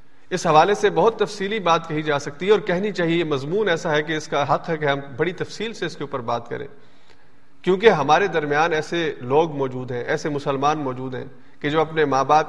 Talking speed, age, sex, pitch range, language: 230 wpm, 40-59, male, 145-180 Hz, Urdu